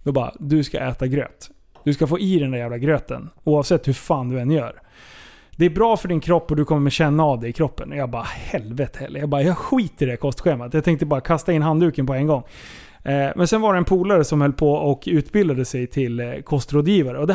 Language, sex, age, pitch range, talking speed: Swedish, male, 30-49, 135-175 Hz, 240 wpm